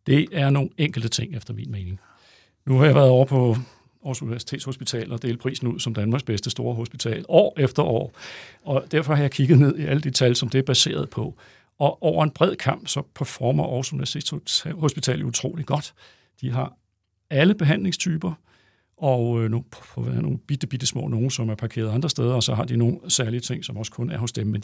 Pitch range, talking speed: 115-145 Hz, 205 wpm